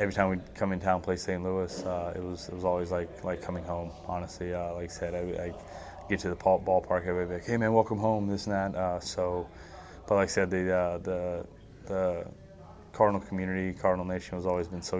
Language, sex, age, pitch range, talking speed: English, male, 20-39, 90-95 Hz, 235 wpm